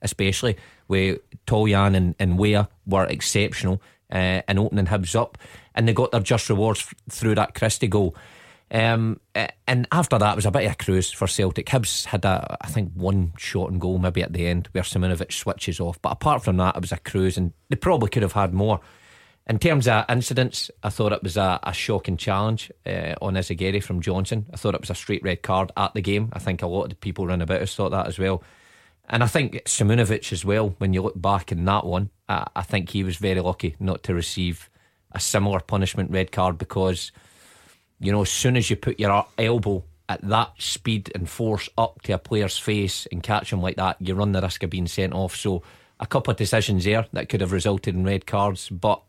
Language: English